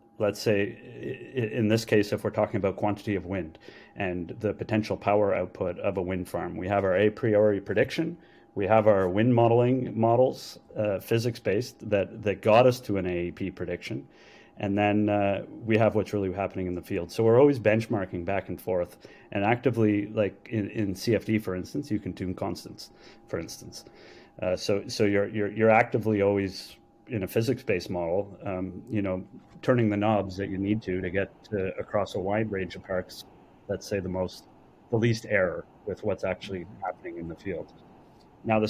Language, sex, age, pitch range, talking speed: English, male, 30-49, 95-110 Hz, 190 wpm